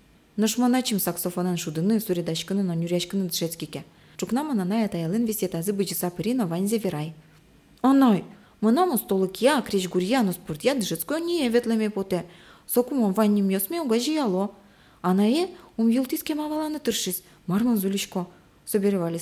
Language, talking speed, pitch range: English, 135 wpm, 170-240 Hz